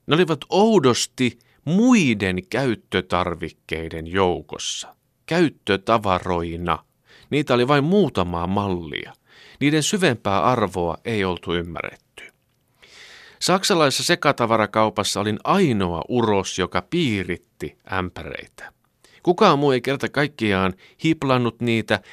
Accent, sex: native, male